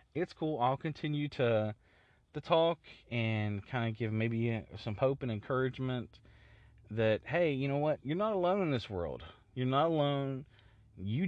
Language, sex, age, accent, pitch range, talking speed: English, male, 30-49, American, 105-140 Hz, 165 wpm